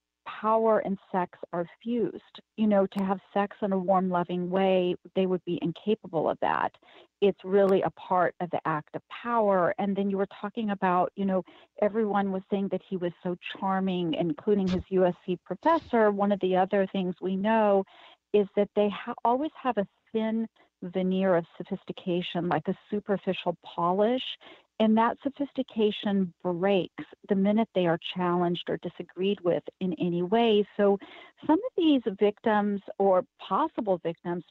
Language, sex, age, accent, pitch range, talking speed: English, female, 40-59, American, 180-215 Hz, 165 wpm